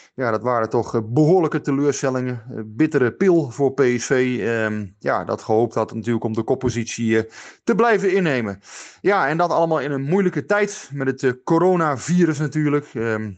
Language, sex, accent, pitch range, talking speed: Dutch, male, Dutch, 120-150 Hz, 170 wpm